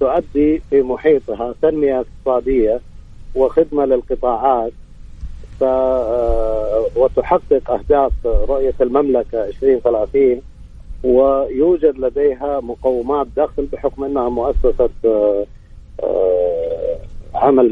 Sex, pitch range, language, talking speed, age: male, 135-215 Hz, English, 70 wpm, 50-69